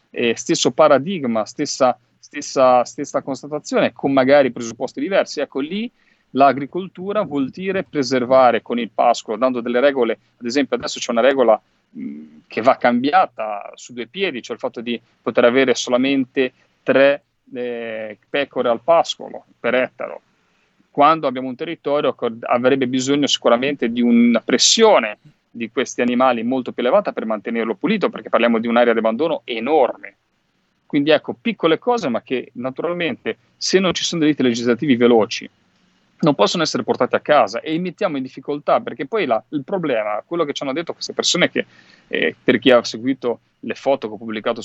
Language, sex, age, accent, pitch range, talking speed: Italian, male, 40-59, native, 120-150 Hz, 170 wpm